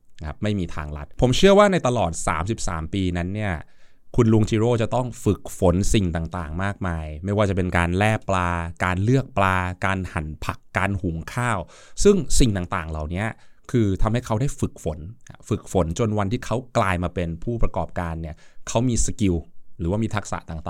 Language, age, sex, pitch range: Thai, 20-39, male, 85-115 Hz